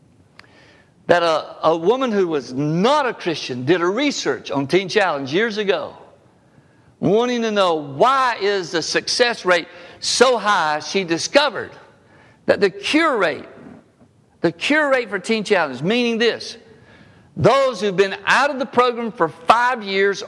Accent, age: American, 60-79